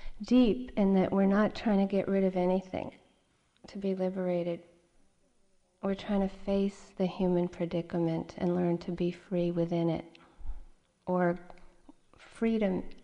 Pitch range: 170-195 Hz